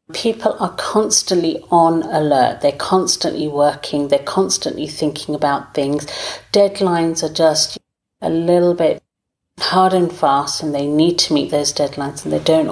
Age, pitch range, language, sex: 40-59, 145-185 Hz, English, female